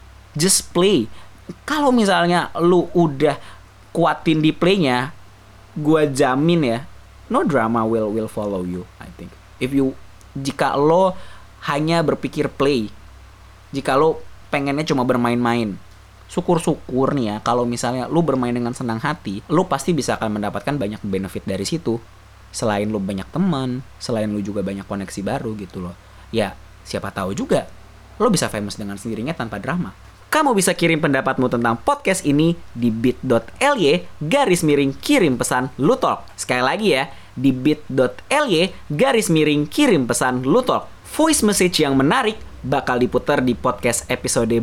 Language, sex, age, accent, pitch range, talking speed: Indonesian, male, 20-39, native, 105-155 Hz, 145 wpm